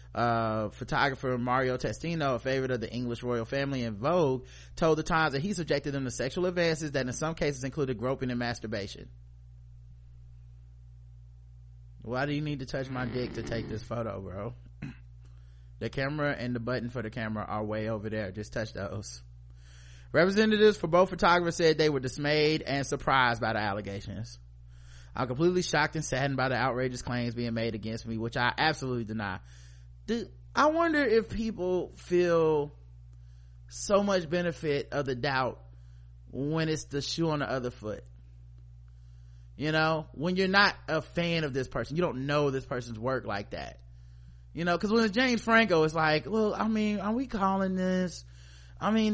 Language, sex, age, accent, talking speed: English, male, 30-49, American, 175 wpm